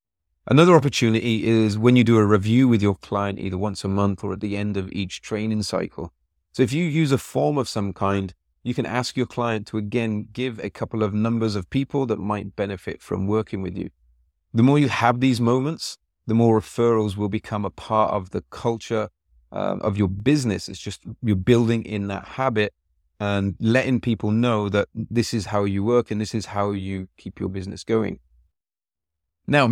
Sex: male